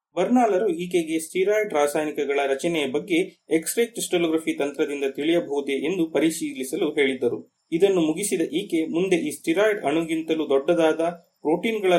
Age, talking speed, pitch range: 30-49, 110 wpm, 145-180 Hz